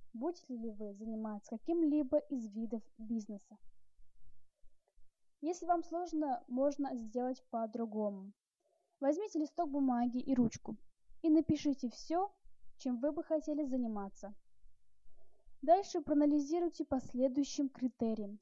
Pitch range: 220-305 Hz